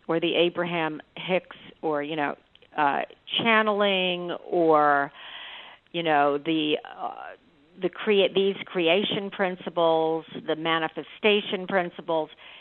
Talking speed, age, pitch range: 105 wpm, 50-69, 155-190 Hz